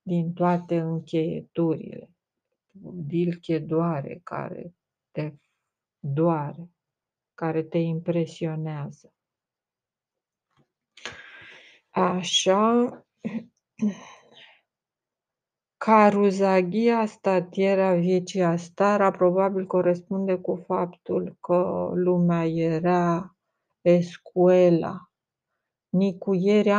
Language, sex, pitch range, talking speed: Romanian, female, 170-190 Hz, 55 wpm